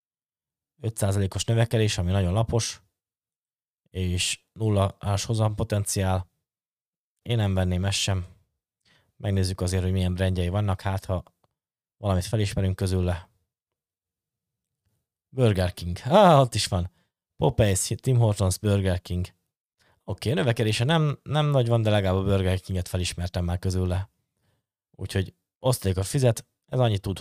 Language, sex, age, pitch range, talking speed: Hungarian, male, 20-39, 95-115 Hz, 130 wpm